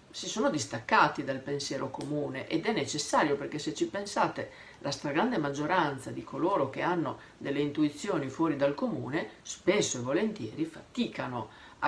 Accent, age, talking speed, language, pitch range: native, 50-69, 150 wpm, Italian, 135-165 Hz